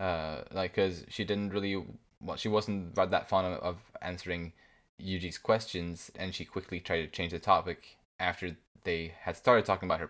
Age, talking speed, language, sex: 20-39, 185 wpm, English, male